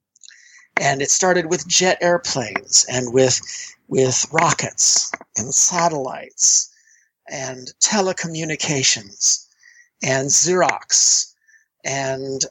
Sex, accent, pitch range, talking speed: male, American, 135-185 Hz, 80 wpm